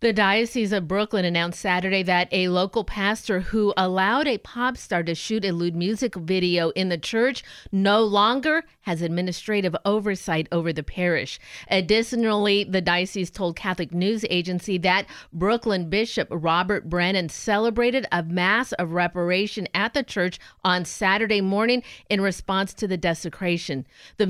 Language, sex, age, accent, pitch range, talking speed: English, female, 50-69, American, 175-215 Hz, 150 wpm